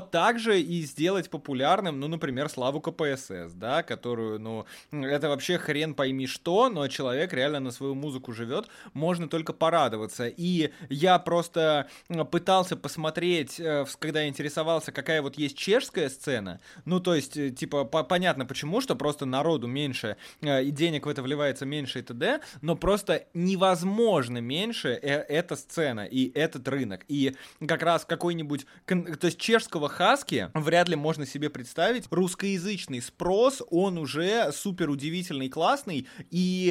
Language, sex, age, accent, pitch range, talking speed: Russian, male, 20-39, native, 145-180 Hz, 140 wpm